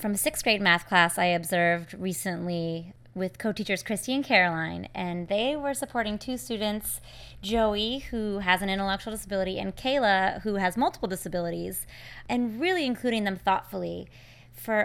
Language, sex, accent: English, female, American